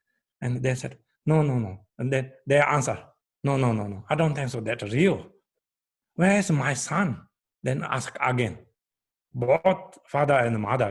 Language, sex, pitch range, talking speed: English, male, 110-150 Hz, 170 wpm